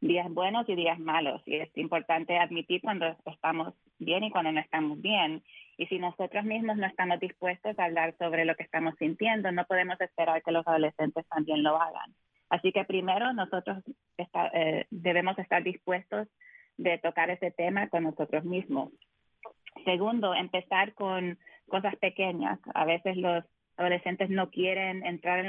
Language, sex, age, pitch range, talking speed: English, female, 20-39, 165-190 Hz, 160 wpm